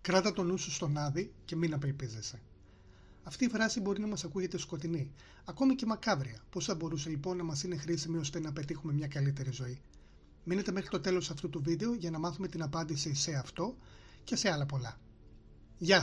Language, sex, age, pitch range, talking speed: Greek, male, 30-49, 155-195 Hz, 200 wpm